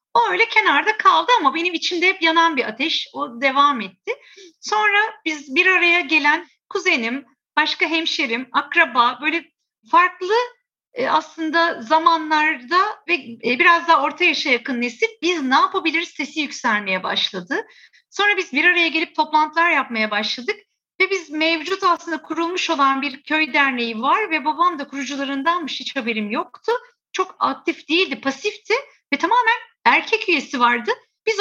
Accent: native